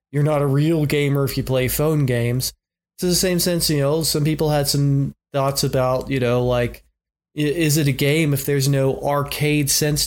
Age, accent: 30-49, American